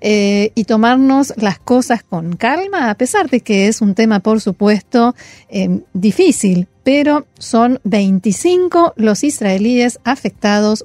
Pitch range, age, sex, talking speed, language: 200-255 Hz, 40-59, female, 135 wpm, Spanish